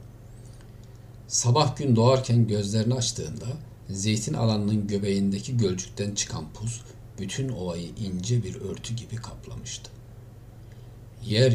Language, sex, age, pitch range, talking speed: Turkish, male, 50-69, 105-120 Hz, 100 wpm